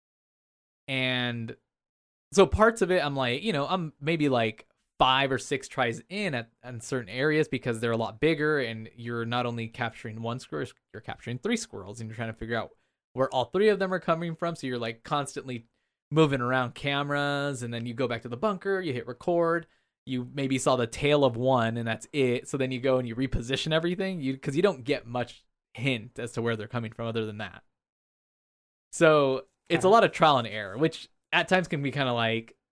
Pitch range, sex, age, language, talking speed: 120-160 Hz, male, 20-39, English, 220 wpm